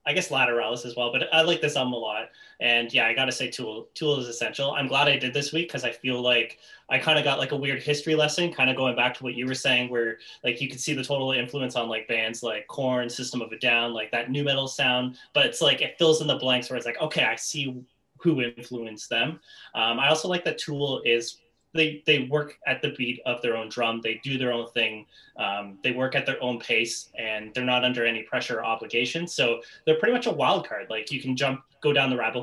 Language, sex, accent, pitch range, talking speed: English, male, American, 115-140 Hz, 260 wpm